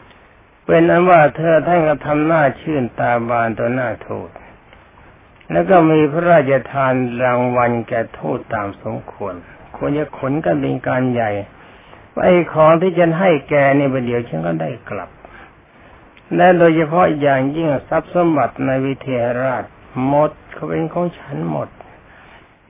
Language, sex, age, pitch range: Thai, male, 60-79, 120-160 Hz